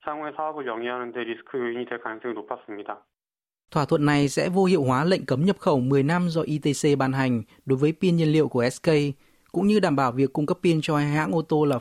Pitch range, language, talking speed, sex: 125-160 Hz, Vietnamese, 205 wpm, male